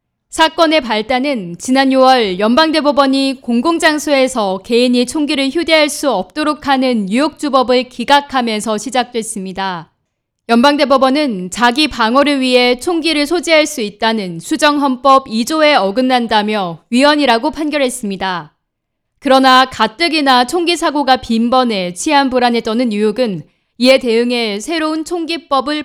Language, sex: Korean, female